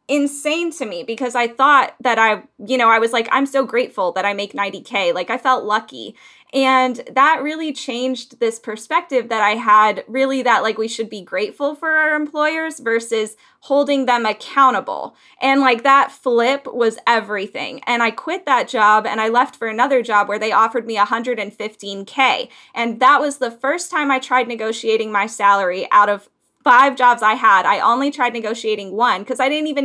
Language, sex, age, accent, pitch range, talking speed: English, female, 10-29, American, 225-275 Hz, 190 wpm